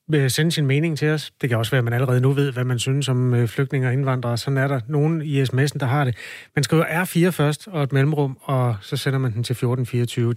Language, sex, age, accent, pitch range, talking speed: Danish, male, 30-49, native, 125-155 Hz, 255 wpm